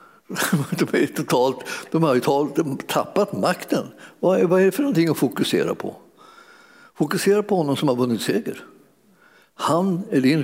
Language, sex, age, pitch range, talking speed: Swedish, male, 60-79, 140-195 Hz, 145 wpm